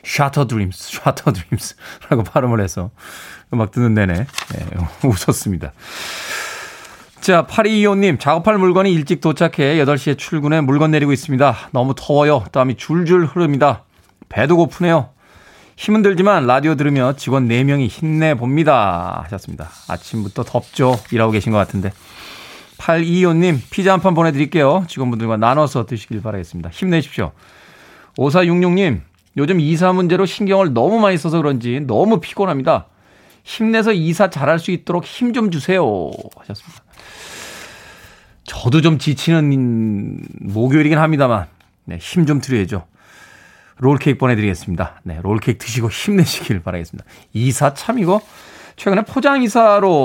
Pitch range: 115-175 Hz